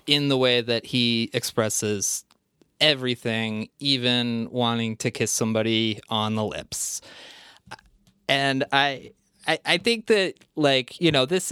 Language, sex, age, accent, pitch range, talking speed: English, male, 30-49, American, 125-155 Hz, 130 wpm